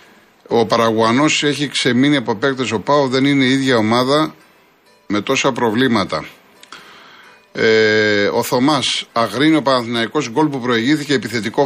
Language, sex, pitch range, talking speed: Greek, male, 115-145 Hz, 135 wpm